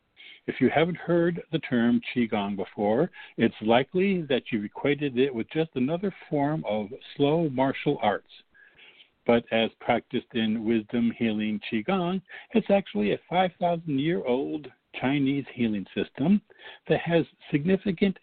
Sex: male